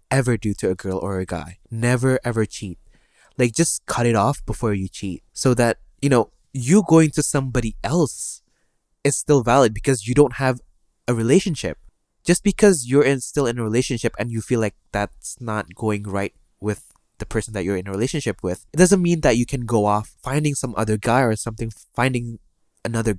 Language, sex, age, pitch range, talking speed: English, male, 20-39, 110-135 Hz, 200 wpm